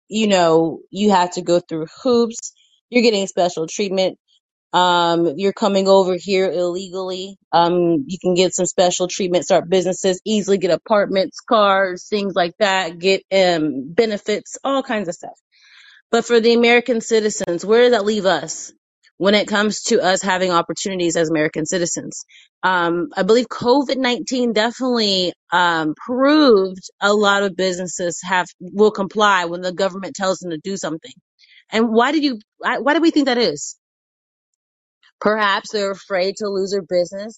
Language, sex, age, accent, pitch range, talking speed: English, female, 30-49, American, 180-225 Hz, 160 wpm